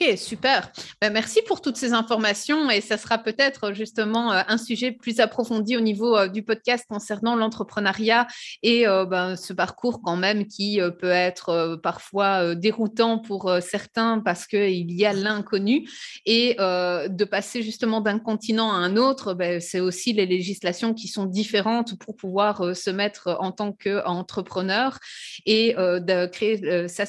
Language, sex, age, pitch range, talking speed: French, female, 30-49, 190-225 Hz, 145 wpm